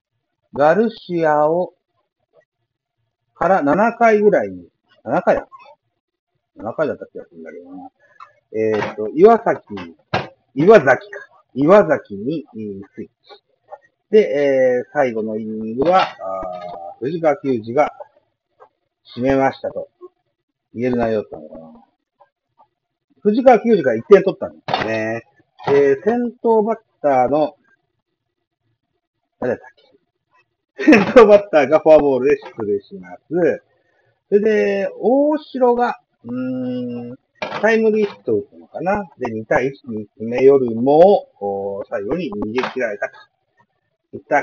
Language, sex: Japanese, male